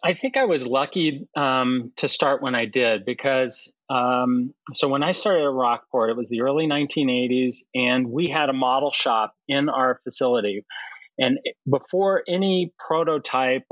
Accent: American